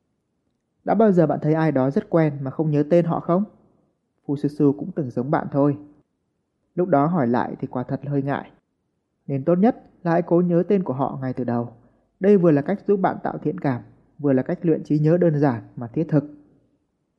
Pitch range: 140-180 Hz